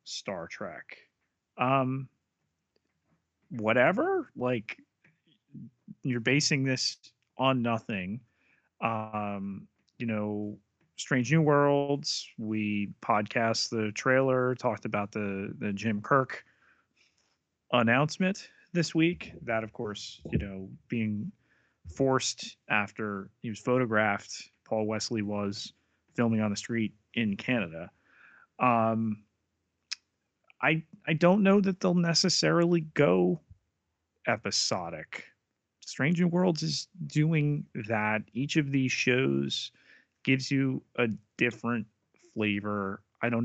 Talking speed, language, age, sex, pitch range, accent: 105 wpm, English, 30-49, male, 105-155 Hz, American